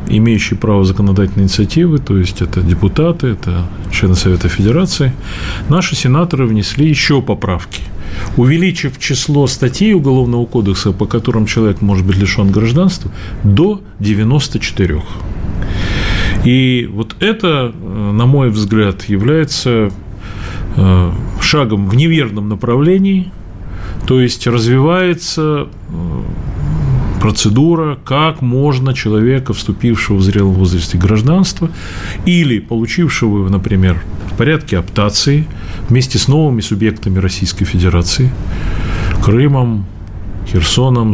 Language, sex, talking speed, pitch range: Russian, male, 100 wpm, 95-130 Hz